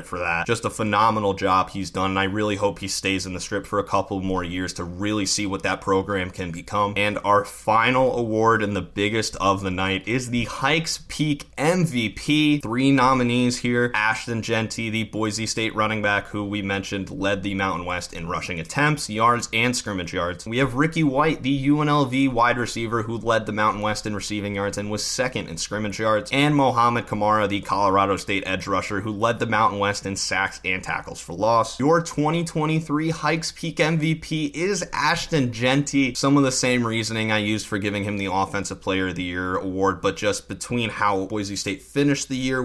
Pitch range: 100-120 Hz